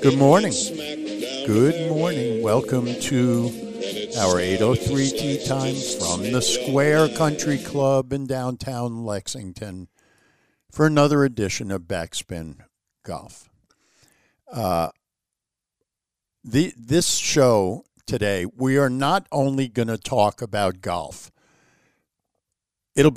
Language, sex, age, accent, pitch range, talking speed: English, male, 60-79, American, 95-135 Hz, 100 wpm